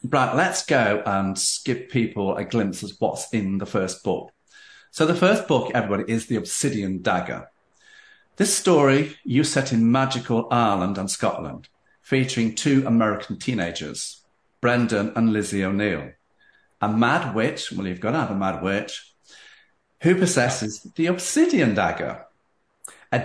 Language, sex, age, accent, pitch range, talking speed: English, male, 50-69, British, 105-145 Hz, 145 wpm